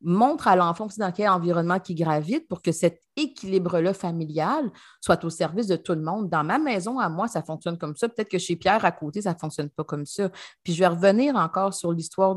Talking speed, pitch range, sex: 240 wpm, 170-230 Hz, female